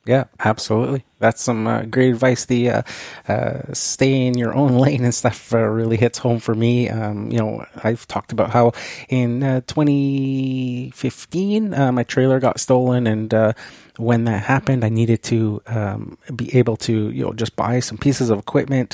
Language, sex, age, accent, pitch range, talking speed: English, male, 30-49, American, 110-130 Hz, 185 wpm